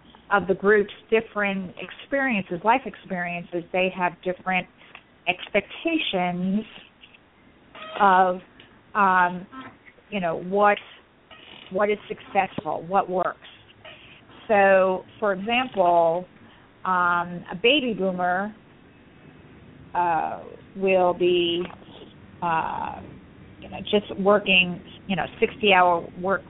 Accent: American